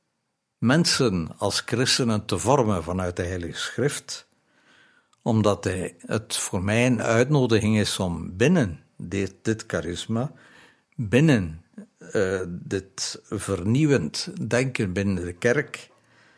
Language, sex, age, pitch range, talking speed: Dutch, male, 60-79, 95-125 Hz, 105 wpm